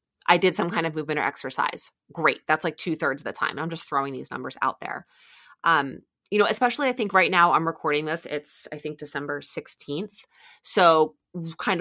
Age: 30-49